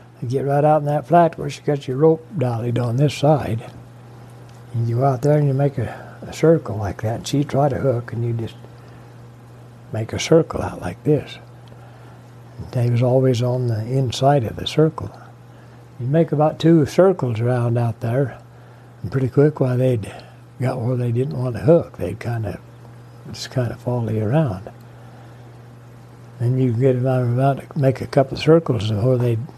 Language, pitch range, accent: English, 120-135 Hz, American